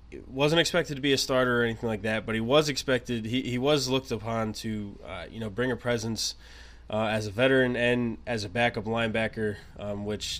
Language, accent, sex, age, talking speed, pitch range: English, American, male, 20-39, 215 wpm, 100-130 Hz